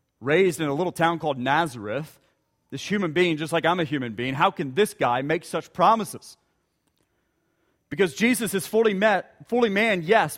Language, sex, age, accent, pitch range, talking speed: English, male, 40-59, American, 165-225 Hz, 175 wpm